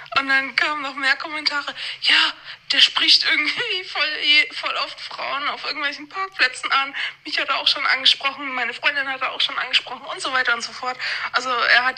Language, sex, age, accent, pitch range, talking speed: German, female, 20-39, German, 225-270 Hz, 200 wpm